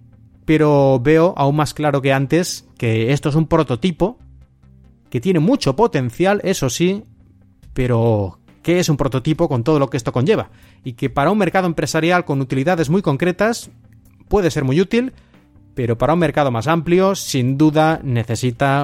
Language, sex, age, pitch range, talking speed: Spanish, male, 30-49, 125-160 Hz, 165 wpm